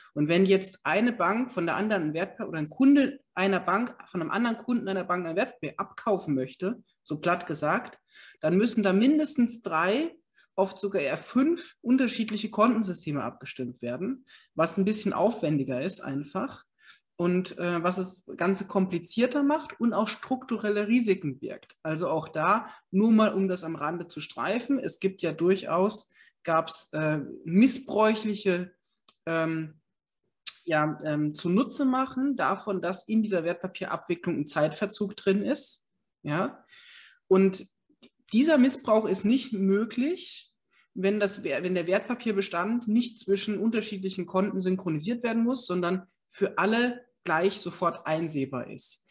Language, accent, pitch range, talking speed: German, German, 170-230 Hz, 140 wpm